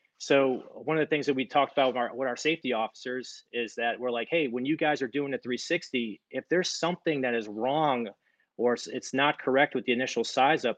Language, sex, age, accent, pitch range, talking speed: English, male, 30-49, American, 120-140 Hz, 230 wpm